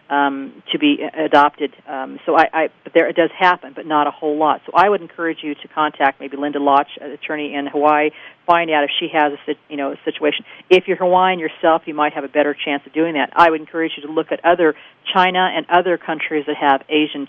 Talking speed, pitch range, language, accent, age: 245 wpm, 145-170 Hz, English, American, 40-59